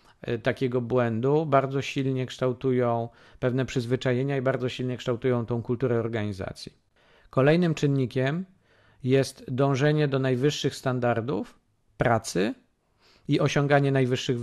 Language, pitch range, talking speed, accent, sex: Polish, 120-140 Hz, 105 wpm, native, male